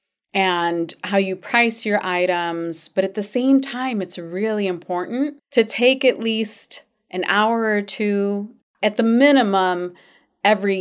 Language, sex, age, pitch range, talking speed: English, female, 30-49, 185-230 Hz, 145 wpm